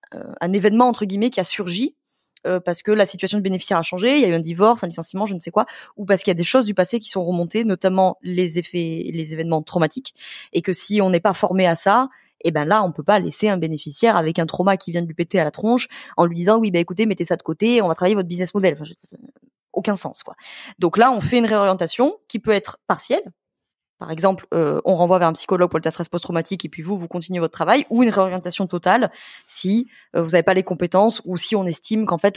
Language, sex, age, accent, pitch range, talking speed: French, female, 20-39, French, 175-215 Hz, 265 wpm